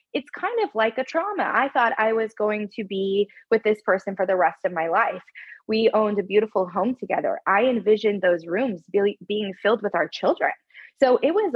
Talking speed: 210 wpm